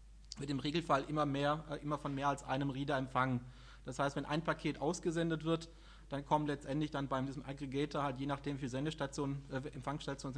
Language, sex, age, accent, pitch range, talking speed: German, male, 30-49, German, 135-160 Hz, 195 wpm